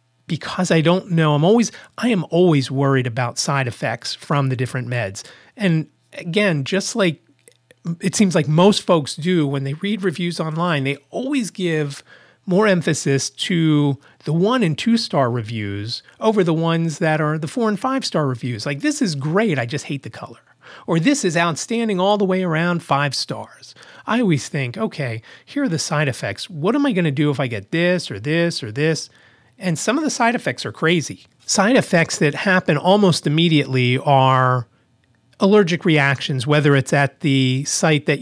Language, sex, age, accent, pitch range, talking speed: English, male, 30-49, American, 135-180 Hz, 190 wpm